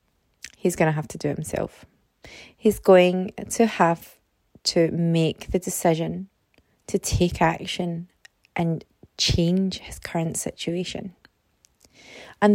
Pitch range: 180-220 Hz